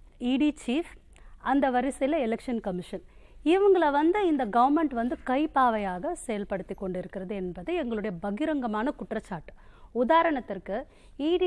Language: Tamil